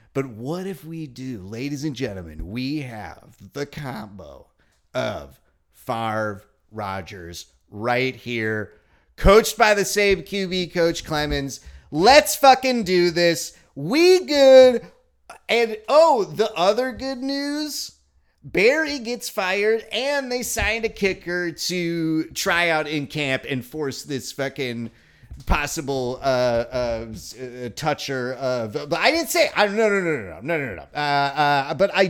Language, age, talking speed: English, 30-49, 145 wpm